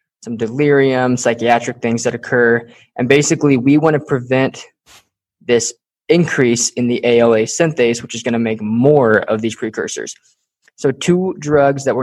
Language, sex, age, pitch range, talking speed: English, male, 20-39, 115-145 Hz, 160 wpm